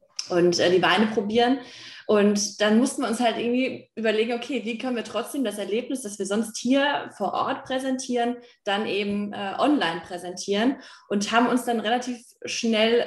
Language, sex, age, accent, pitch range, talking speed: German, female, 20-39, German, 195-240 Hz, 170 wpm